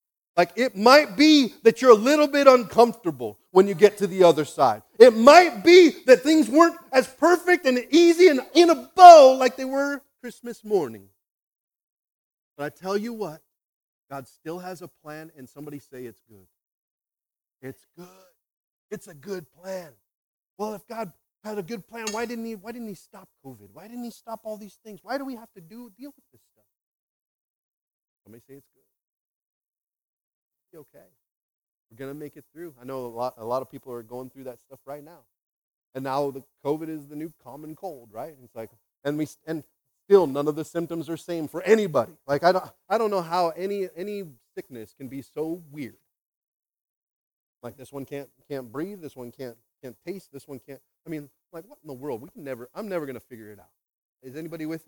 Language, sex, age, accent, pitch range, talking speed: English, male, 40-59, American, 135-225 Hz, 205 wpm